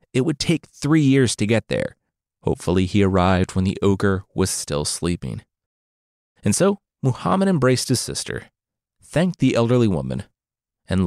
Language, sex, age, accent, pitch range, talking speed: English, male, 30-49, American, 95-145 Hz, 150 wpm